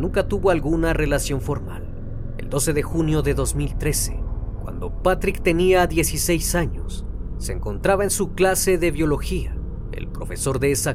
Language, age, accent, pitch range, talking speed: Spanish, 40-59, Mexican, 110-170 Hz, 150 wpm